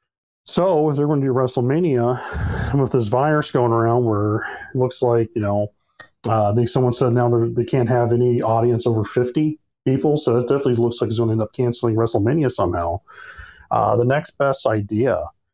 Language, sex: English, male